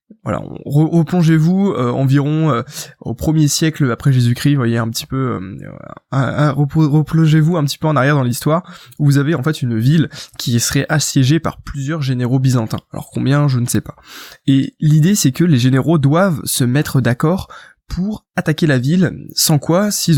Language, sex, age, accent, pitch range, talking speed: French, male, 20-39, French, 135-165 Hz, 190 wpm